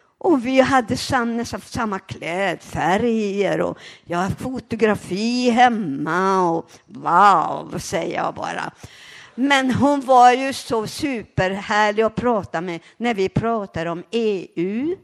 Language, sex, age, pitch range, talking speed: Swedish, female, 60-79, 175-245 Hz, 125 wpm